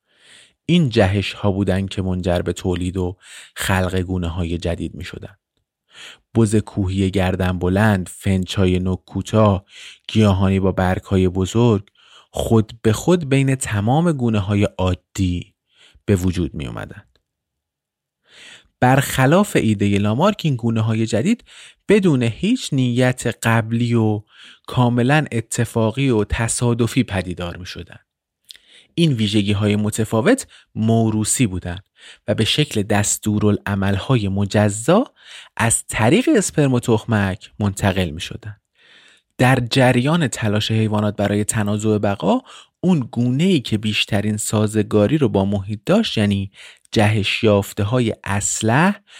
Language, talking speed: Persian, 120 wpm